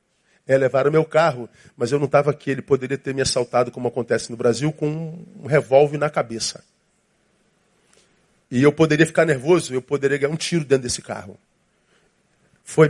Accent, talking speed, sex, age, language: Brazilian, 175 wpm, male, 40-59, Portuguese